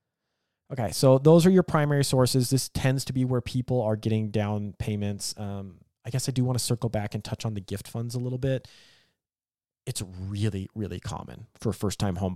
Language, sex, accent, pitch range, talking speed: English, male, American, 100-130 Hz, 205 wpm